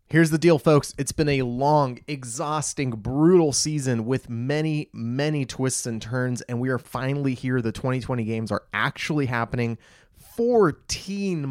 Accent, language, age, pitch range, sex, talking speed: American, English, 20-39, 115-145 Hz, male, 150 wpm